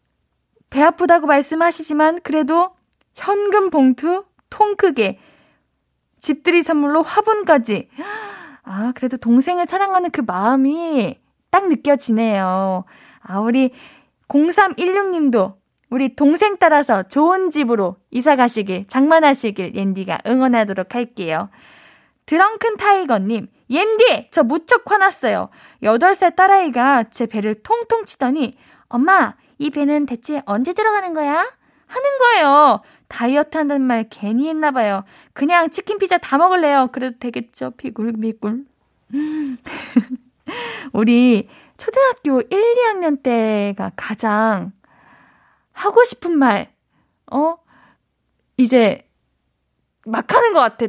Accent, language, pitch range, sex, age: native, Korean, 230-345 Hz, female, 10-29